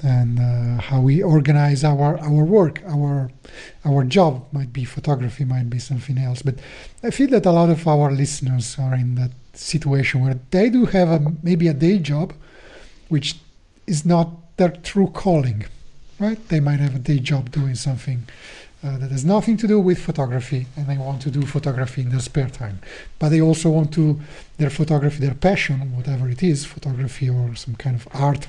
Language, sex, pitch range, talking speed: English, male, 130-165 Hz, 190 wpm